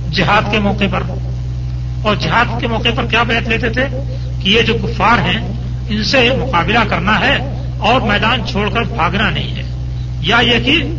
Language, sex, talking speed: Urdu, male, 180 wpm